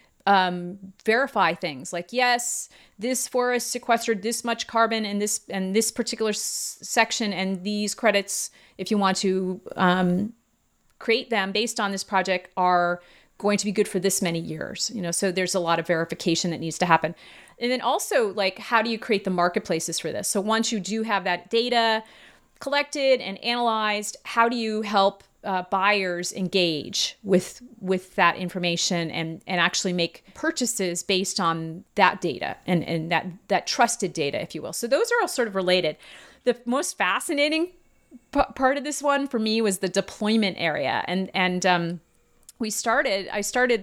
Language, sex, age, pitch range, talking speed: English, female, 30-49, 180-235 Hz, 180 wpm